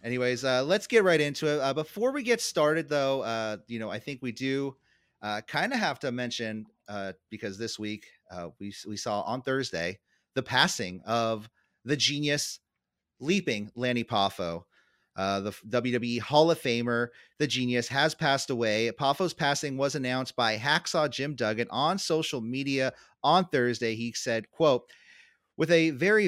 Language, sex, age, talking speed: English, male, 30-49, 170 wpm